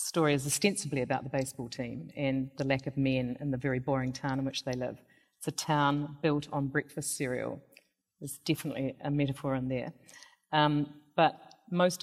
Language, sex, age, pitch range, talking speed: English, female, 40-59, 135-150 Hz, 185 wpm